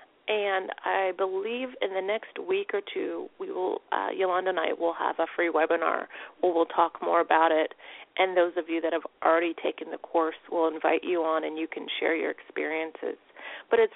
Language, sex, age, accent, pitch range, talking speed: English, female, 30-49, American, 170-240 Hz, 205 wpm